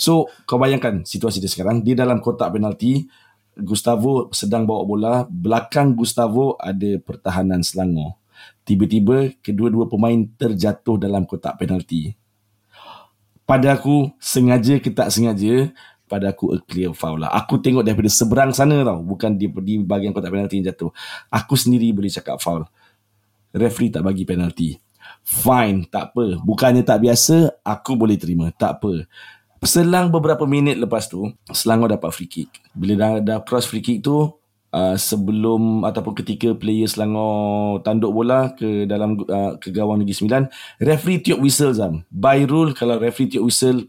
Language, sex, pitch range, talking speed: Malay, male, 105-135 Hz, 150 wpm